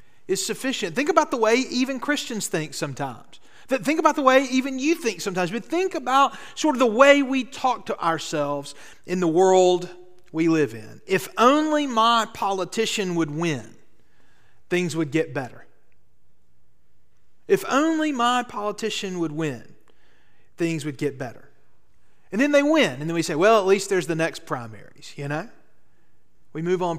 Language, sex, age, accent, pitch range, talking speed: English, male, 40-59, American, 160-240 Hz, 165 wpm